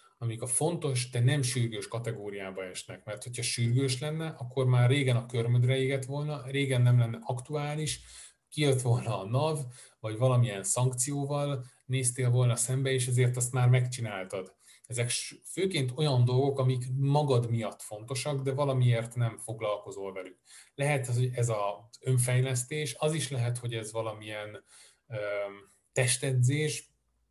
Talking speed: 135 wpm